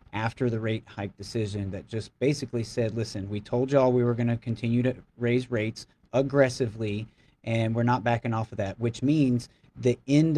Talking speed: 190 wpm